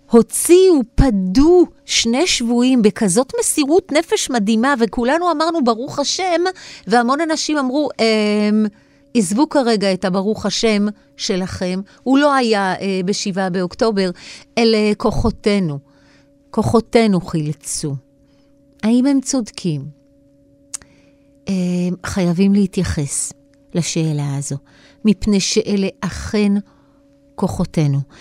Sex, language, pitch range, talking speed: female, Hebrew, 180-280 Hz, 90 wpm